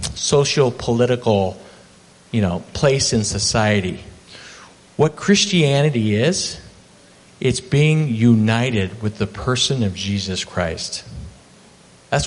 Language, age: English, 50-69